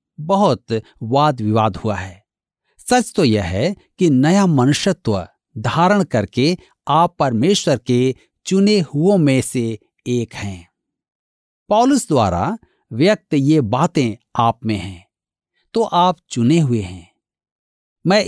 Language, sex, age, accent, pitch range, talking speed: Hindi, male, 50-69, native, 110-185 Hz, 120 wpm